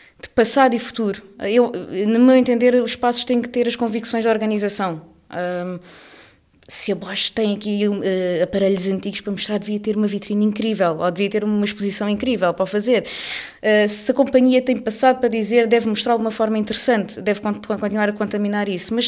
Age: 20-39